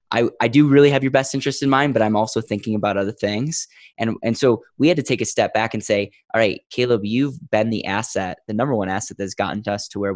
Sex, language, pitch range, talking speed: male, English, 100-115 Hz, 270 wpm